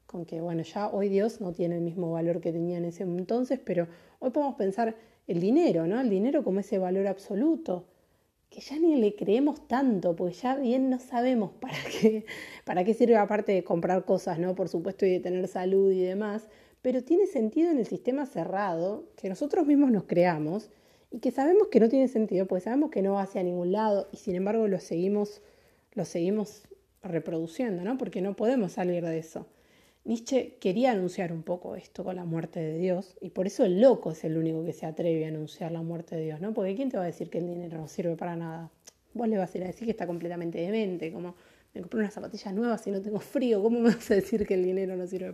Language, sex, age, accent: Spanish, female, 30-49, Argentinian